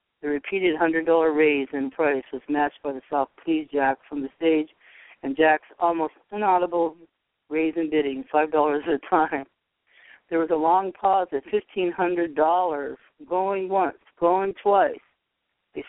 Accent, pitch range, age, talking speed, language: American, 145-165 Hz, 60-79, 145 wpm, English